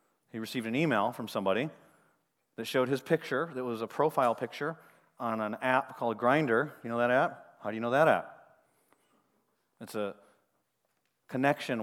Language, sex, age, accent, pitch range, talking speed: English, male, 30-49, American, 105-130 Hz, 165 wpm